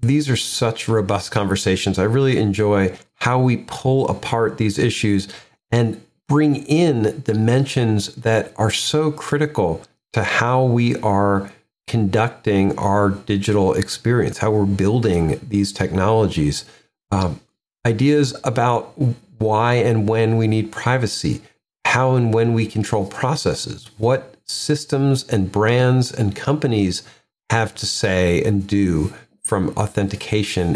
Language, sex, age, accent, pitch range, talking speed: English, male, 40-59, American, 105-130 Hz, 125 wpm